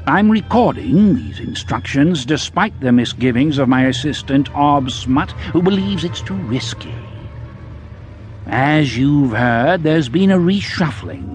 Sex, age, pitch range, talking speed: male, 60-79, 110-150 Hz, 125 wpm